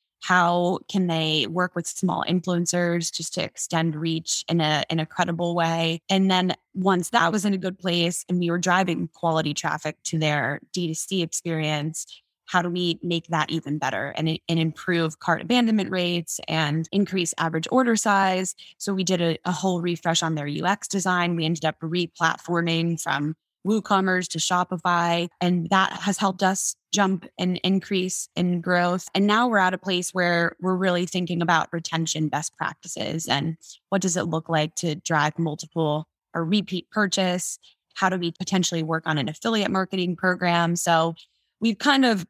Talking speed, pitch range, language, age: 175 wpm, 165-185 Hz, English, 10-29